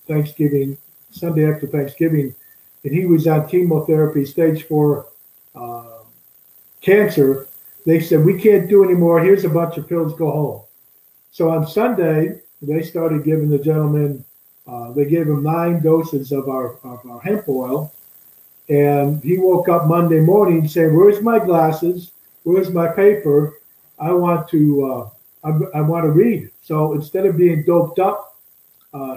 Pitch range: 145-170 Hz